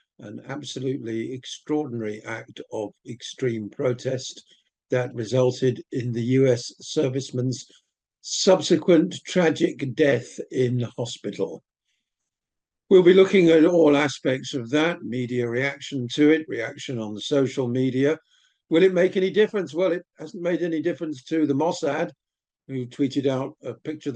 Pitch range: 125-155 Hz